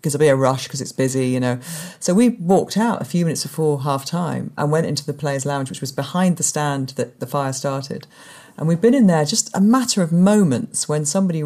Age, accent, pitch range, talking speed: 40-59, British, 140-170 Hz, 245 wpm